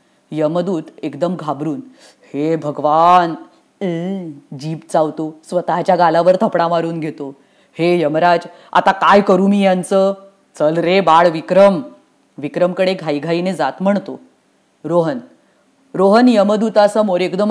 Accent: Indian